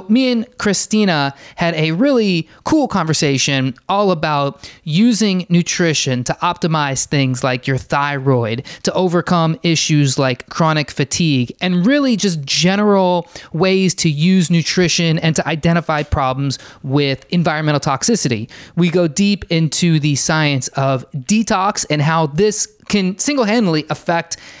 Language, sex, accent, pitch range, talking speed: English, male, American, 150-195 Hz, 130 wpm